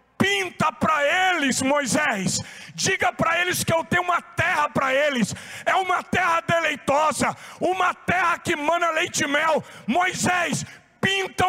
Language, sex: Portuguese, male